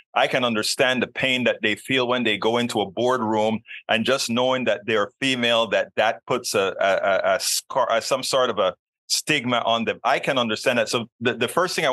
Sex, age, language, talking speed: male, 30-49, English, 230 wpm